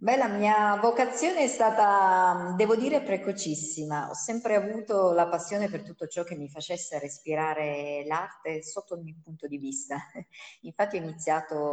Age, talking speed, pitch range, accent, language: 30-49, 160 wpm, 150-215 Hz, native, Italian